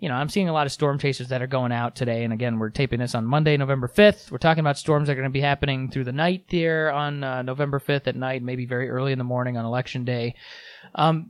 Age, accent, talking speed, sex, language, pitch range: 20-39, American, 280 wpm, male, English, 130-165 Hz